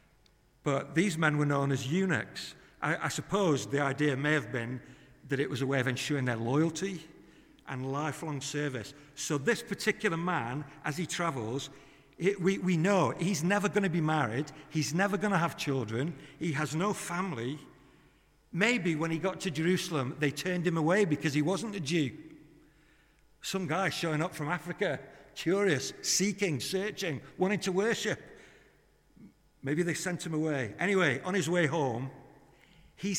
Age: 60-79